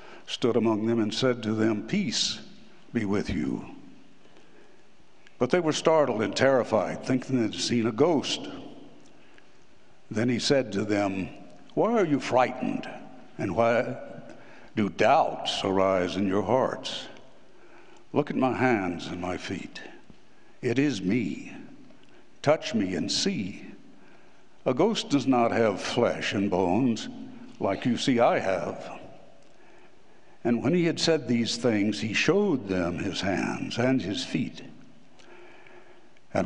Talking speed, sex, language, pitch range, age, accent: 135 wpm, male, English, 105-135 Hz, 60-79, American